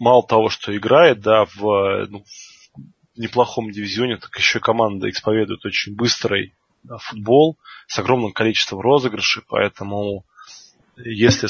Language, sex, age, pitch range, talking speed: Russian, male, 20-39, 105-125 Hz, 130 wpm